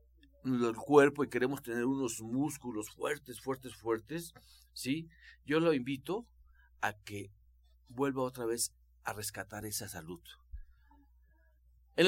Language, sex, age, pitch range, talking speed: Spanish, male, 50-69, 100-140 Hz, 120 wpm